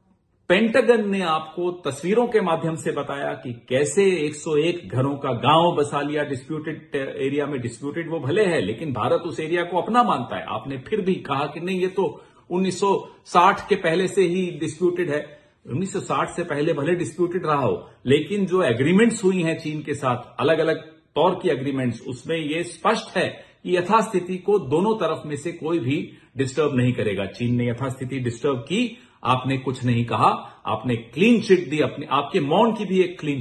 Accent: native